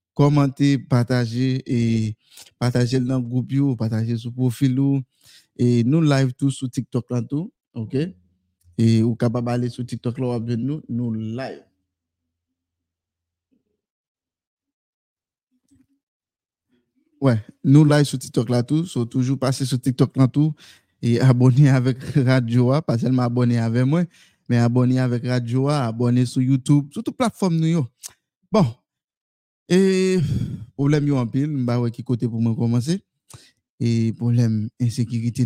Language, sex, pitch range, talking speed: French, male, 120-145 Hz, 140 wpm